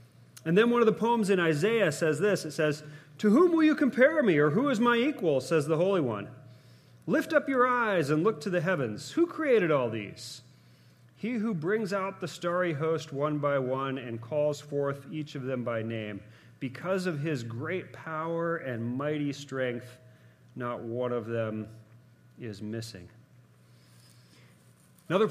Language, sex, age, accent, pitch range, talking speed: English, male, 40-59, American, 125-175 Hz, 175 wpm